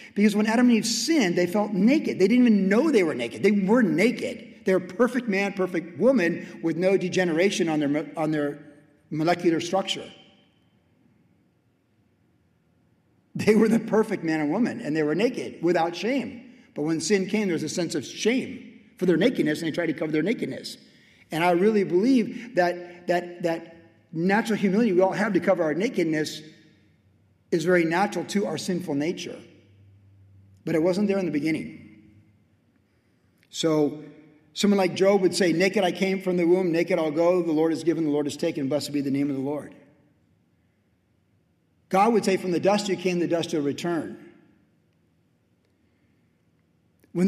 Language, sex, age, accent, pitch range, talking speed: English, male, 50-69, American, 150-200 Hz, 180 wpm